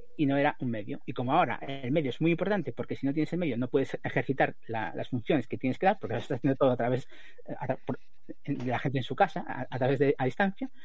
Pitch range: 125-175 Hz